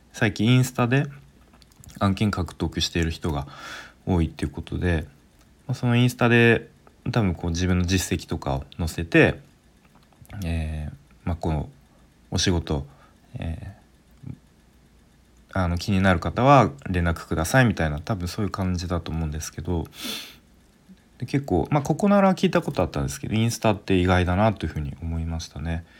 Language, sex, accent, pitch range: Japanese, male, native, 80-110 Hz